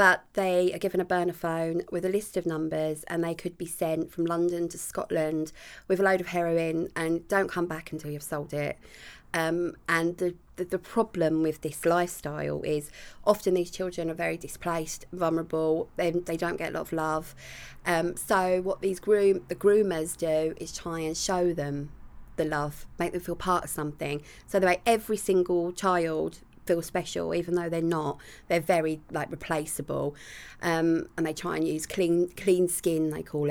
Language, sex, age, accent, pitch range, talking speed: English, female, 20-39, British, 160-185 Hz, 190 wpm